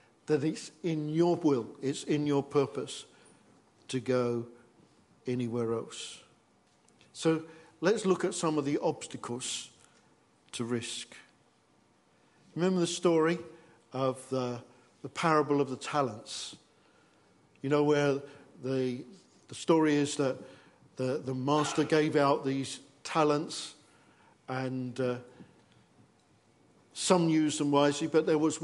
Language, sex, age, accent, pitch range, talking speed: English, male, 50-69, British, 130-160 Hz, 120 wpm